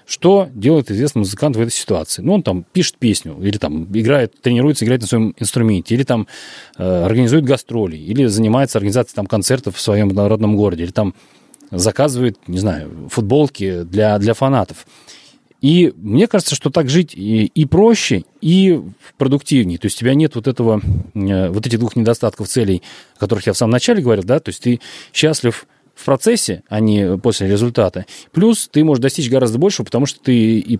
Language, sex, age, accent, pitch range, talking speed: Russian, male, 30-49, native, 105-135 Hz, 175 wpm